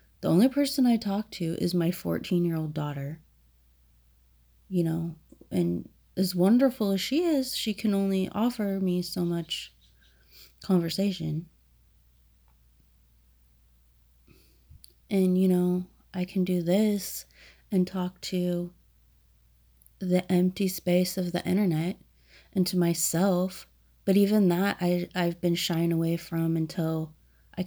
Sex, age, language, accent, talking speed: female, 30-49, English, American, 120 wpm